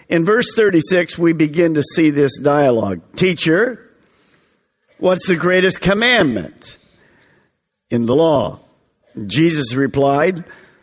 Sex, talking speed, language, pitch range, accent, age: male, 105 wpm, English, 155-195 Hz, American, 50-69